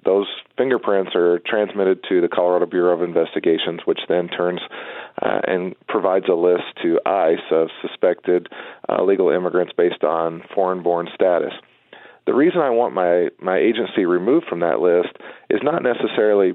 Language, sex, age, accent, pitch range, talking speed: English, male, 40-59, American, 90-125 Hz, 155 wpm